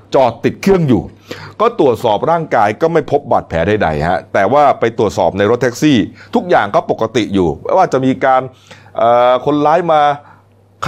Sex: male